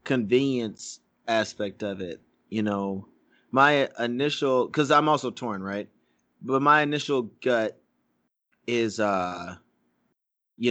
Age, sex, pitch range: 30-49, male, 105-125 Hz